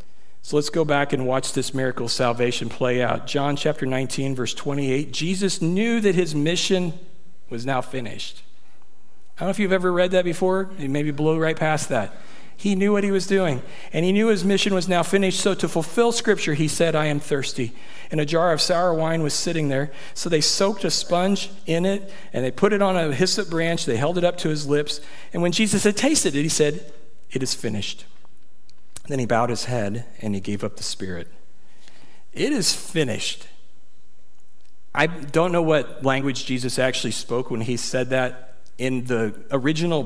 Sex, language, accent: male, English, American